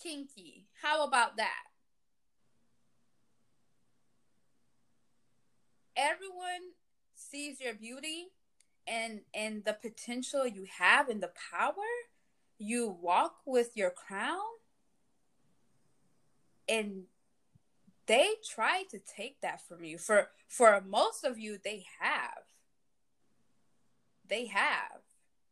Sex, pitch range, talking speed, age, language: female, 205-285 Hz, 90 wpm, 20-39, English